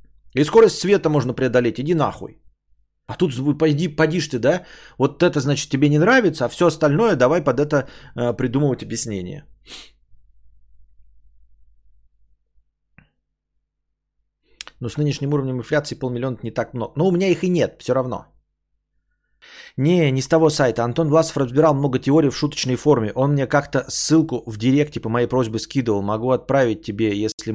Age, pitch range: 30-49, 110-155 Hz